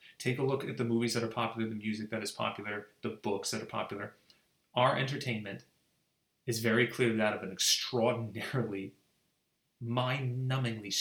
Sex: male